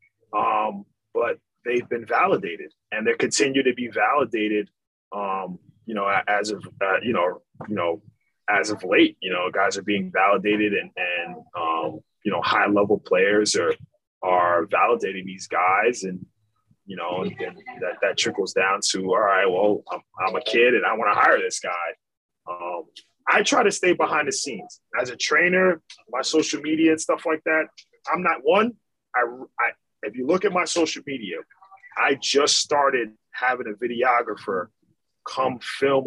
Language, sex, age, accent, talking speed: English, male, 20-39, American, 175 wpm